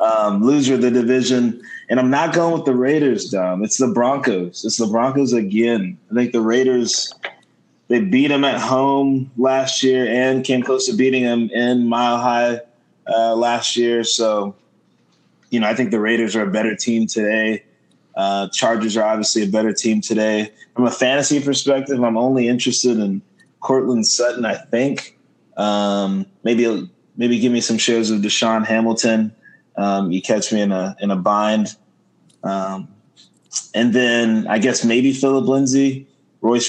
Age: 20-39